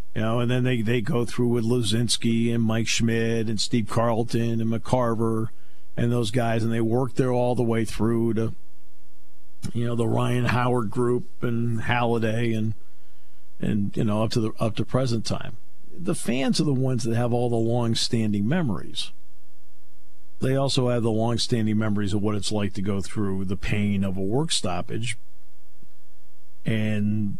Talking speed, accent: 175 wpm, American